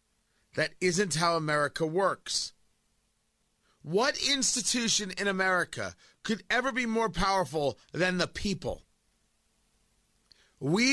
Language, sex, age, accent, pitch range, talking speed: English, male, 30-49, American, 170-225 Hz, 100 wpm